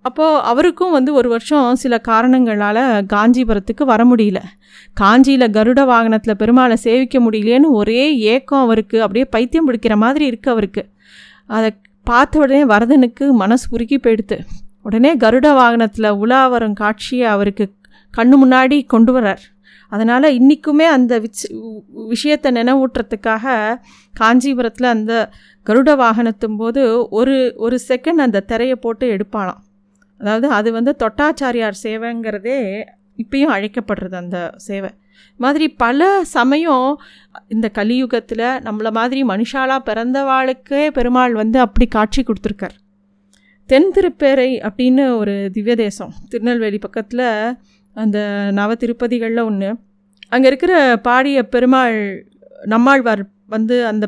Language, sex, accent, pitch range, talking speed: Tamil, female, native, 215-260 Hz, 110 wpm